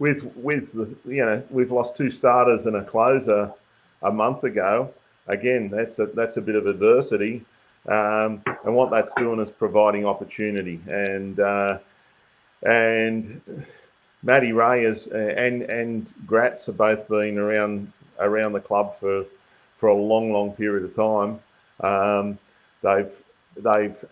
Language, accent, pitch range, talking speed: English, Australian, 100-115 Hz, 140 wpm